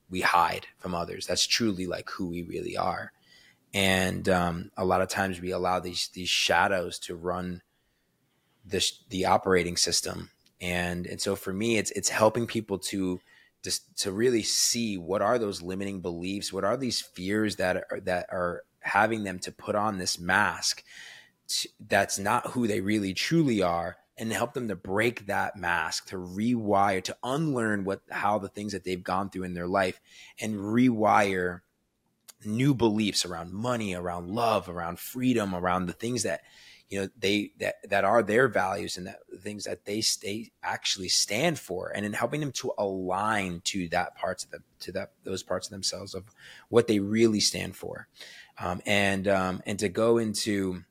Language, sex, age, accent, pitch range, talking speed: English, male, 20-39, American, 90-105 Hz, 180 wpm